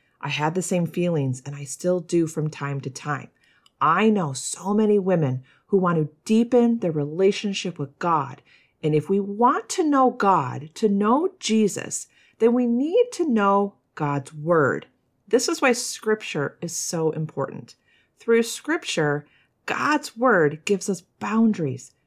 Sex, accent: female, American